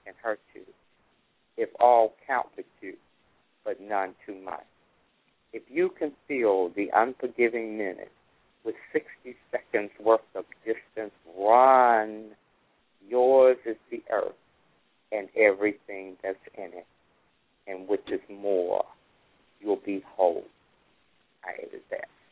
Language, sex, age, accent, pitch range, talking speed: English, male, 50-69, American, 100-125 Hz, 120 wpm